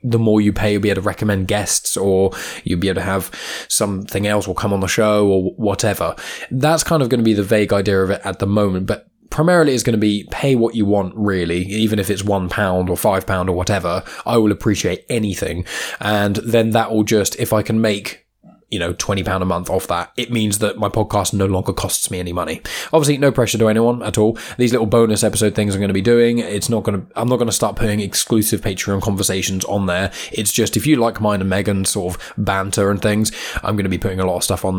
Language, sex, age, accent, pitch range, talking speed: English, male, 20-39, British, 95-115 Hz, 255 wpm